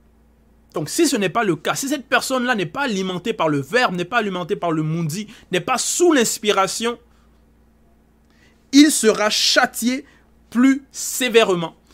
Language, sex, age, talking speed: French, male, 30-49, 155 wpm